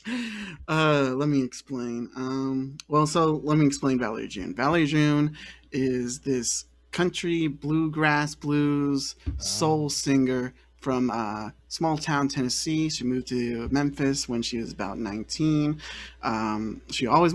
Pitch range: 115-150 Hz